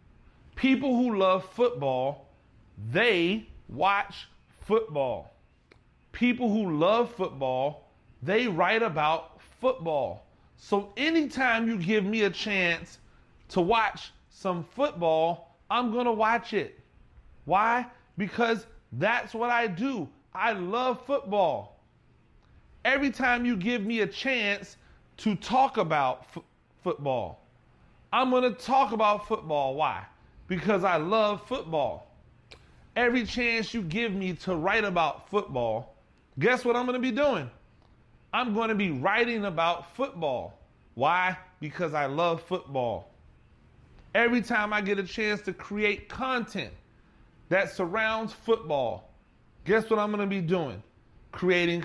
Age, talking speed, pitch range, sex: 30-49, 125 wpm, 165-230 Hz, male